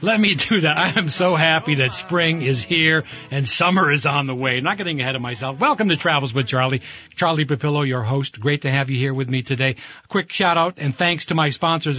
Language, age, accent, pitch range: English, 60-79, American, 145-185 Hz